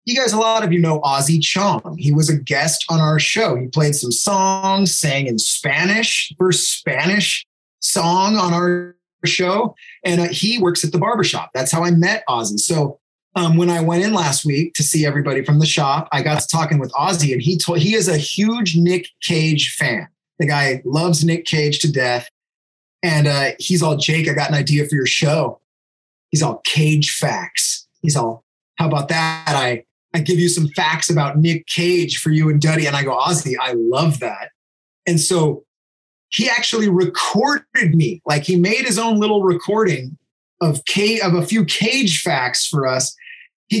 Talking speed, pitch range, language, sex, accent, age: 195 wpm, 150-185 Hz, English, male, American, 30-49